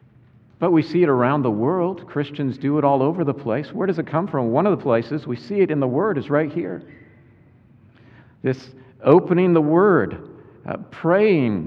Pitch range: 115-145 Hz